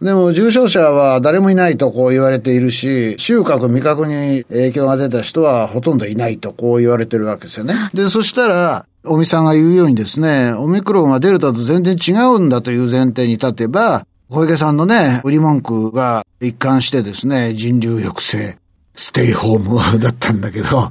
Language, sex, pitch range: Japanese, male, 115-170 Hz